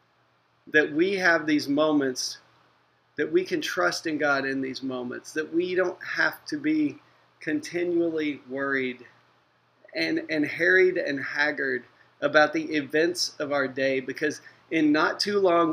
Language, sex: English, male